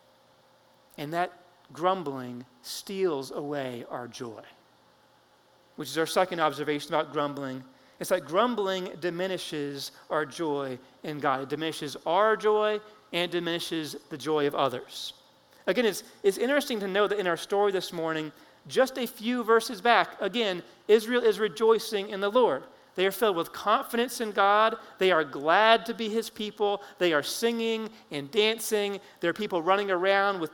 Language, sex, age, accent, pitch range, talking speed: English, male, 40-59, American, 155-220 Hz, 160 wpm